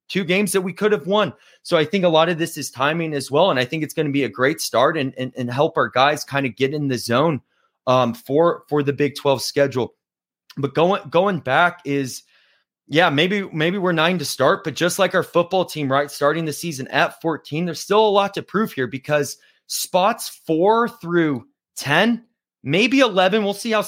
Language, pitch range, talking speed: English, 145-205 Hz, 220 wpm